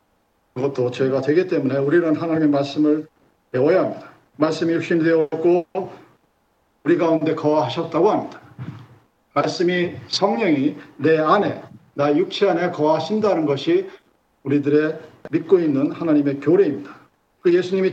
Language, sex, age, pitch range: Korean, male, 50-69, 150-215 Hz